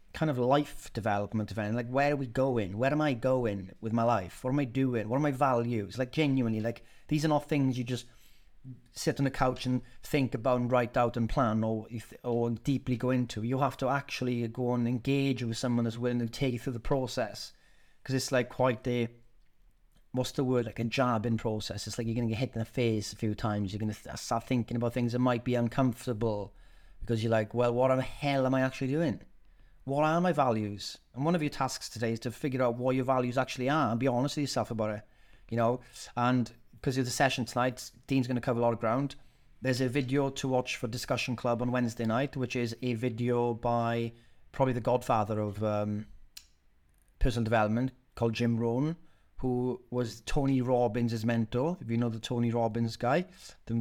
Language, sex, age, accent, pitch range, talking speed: English, male, 30-49, British, 115-130 Hz, 215 wpm